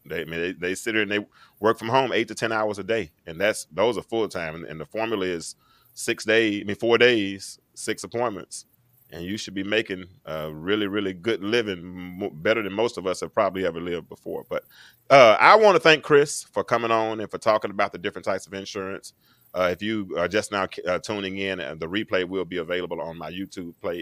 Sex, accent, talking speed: male, American, 235 wpm